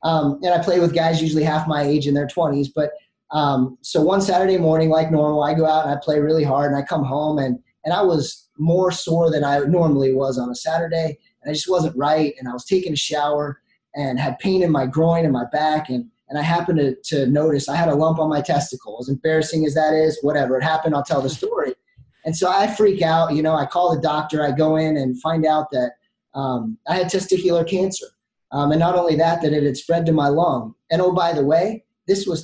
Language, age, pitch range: English, 20-39, 145-175 Hz